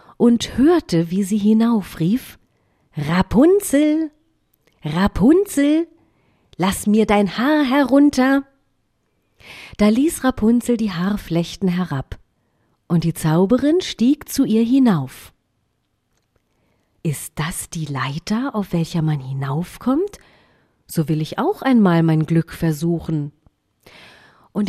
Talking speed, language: 100 wpm, Arabic